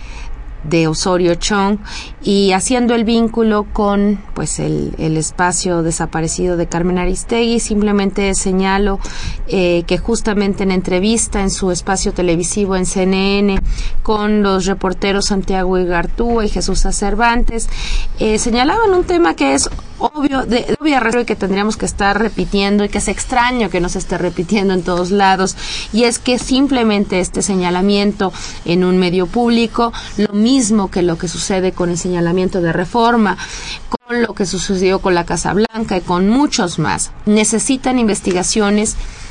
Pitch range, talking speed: 180-225 Hz, 150 wpm